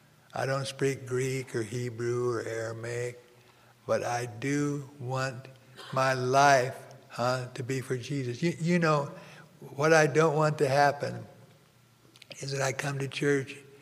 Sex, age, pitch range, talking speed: male, 60-79, 120-145 Hz, 150 wpm